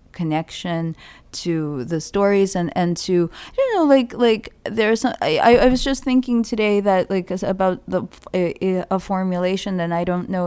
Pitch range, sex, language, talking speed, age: 155-180 Hz, female, English, 160 wpm, 20-39